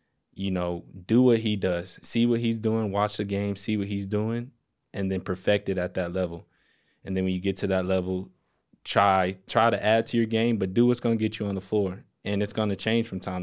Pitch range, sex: 90-100 Hz, male